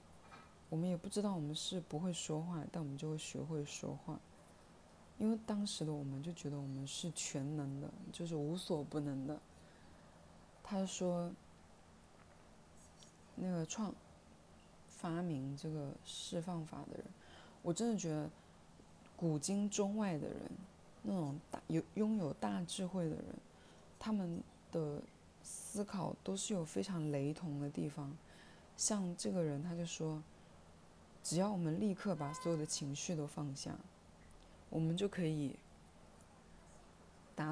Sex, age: female, 20-39